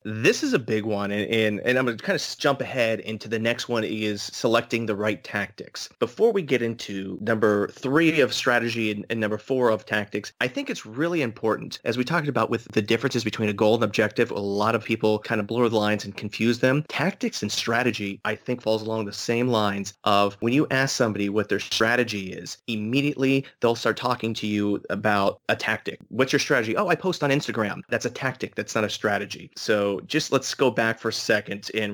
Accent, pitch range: American, 105-120 Hz